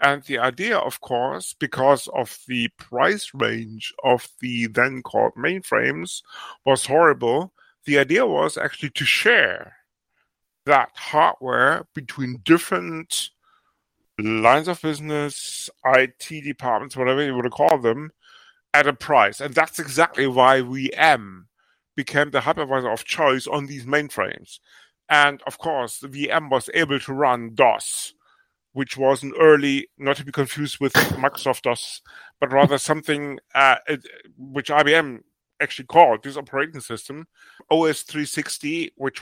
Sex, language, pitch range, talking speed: male, English, 130-155 Hz, 135 wpm